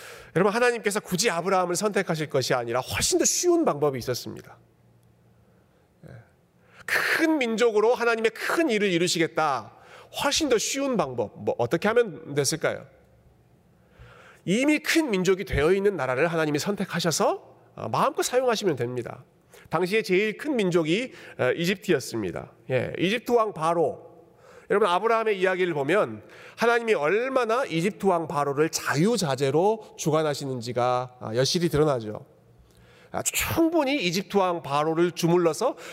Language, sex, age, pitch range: Korean, male, 40-59, 150-220 Hz